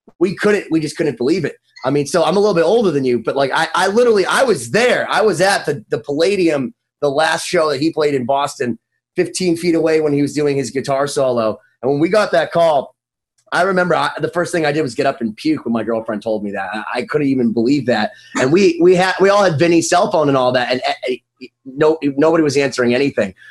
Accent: American